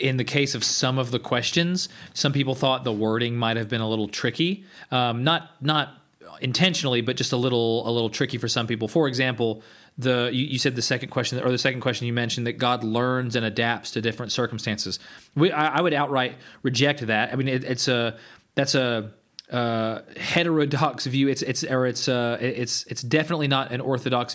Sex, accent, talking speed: male, American, 205 wpm